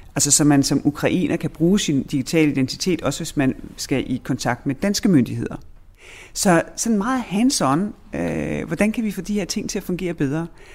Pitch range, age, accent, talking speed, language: 120-175 Hz, 40-59, native, 190 wpm, Danish